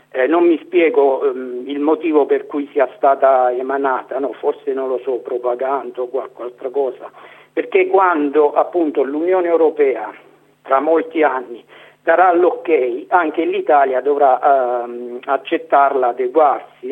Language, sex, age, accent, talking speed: Italian, male, 50-69, native, 135 wpm